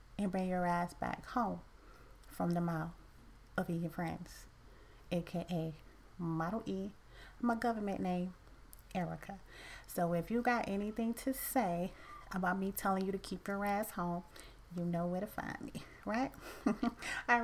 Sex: female